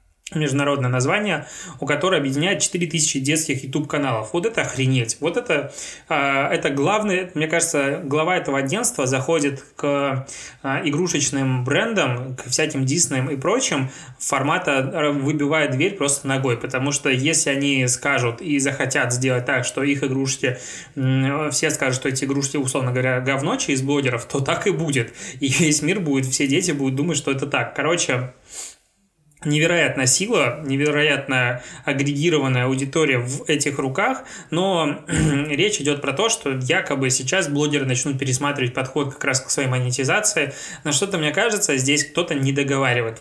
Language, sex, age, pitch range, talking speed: Russian, male, 20-39, 130-155 Hz, 145 wpm